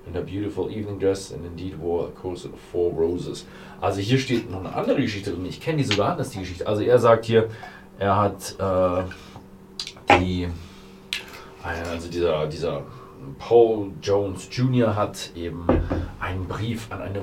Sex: male